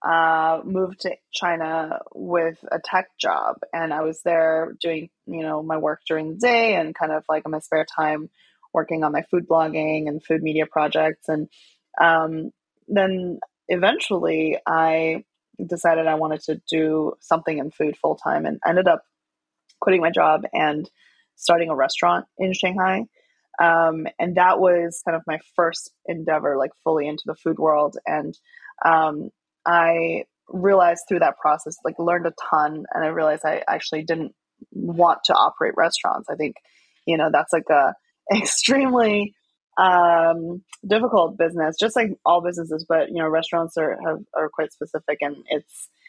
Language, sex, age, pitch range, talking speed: English, female, 20-39, 155-175 Hz, 165 wpm